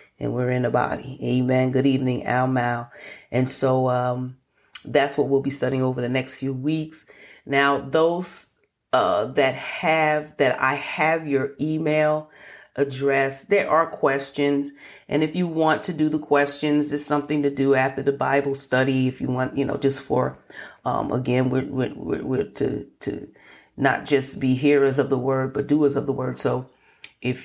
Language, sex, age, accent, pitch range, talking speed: English, female, 40-59, American, 130-145 Hz, 180 wpm